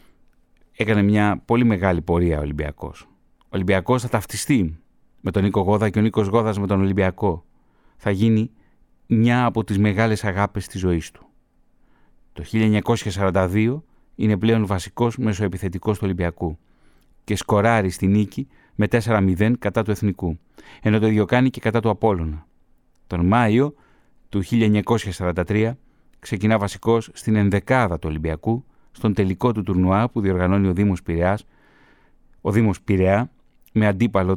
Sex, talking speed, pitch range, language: male, 140 wpm, 95-115 Hz, Greek